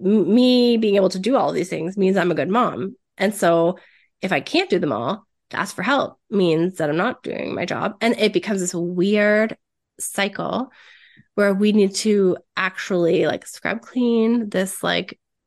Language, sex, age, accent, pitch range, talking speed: English, female, 20-39, American, 180-220 Hz, 190 wpm